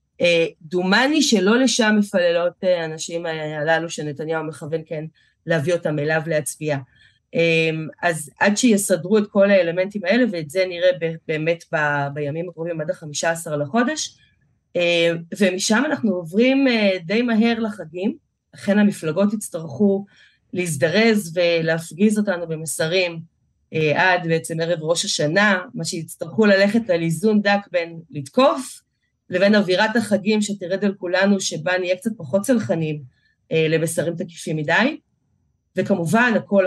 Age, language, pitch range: 30-49, Hebrew, 160-200 Hz